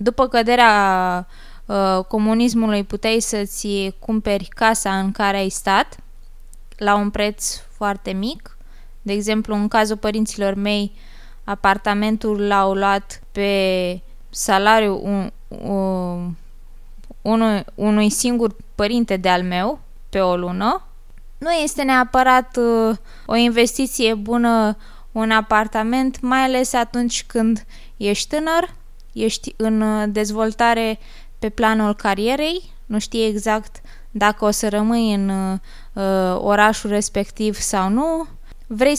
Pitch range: 200-230 Hz